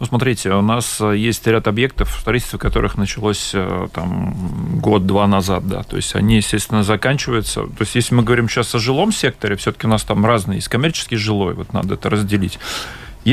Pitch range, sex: 105-125 Hz, male